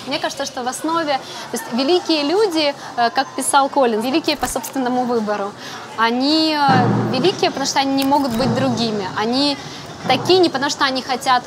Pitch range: 230-300 Hz